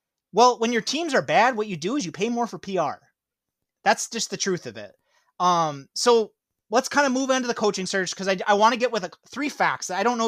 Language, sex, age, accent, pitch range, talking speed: English, male, 30-49, American, 180-240 Hz, 245 wpm